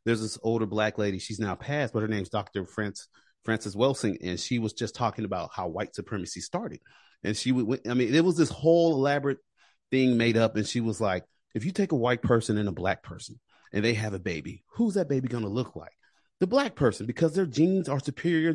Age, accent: 30-49, American